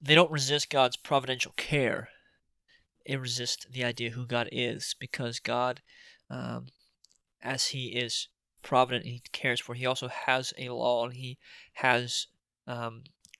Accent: American